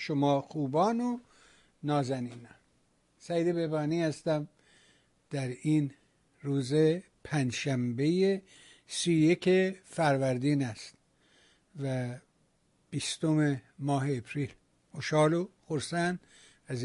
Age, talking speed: 60-79, 80 wpm